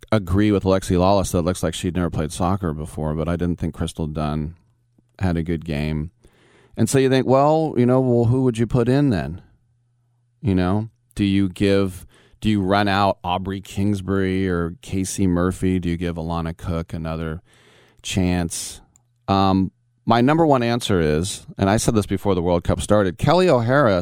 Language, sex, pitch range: English, male, 85-120 Hz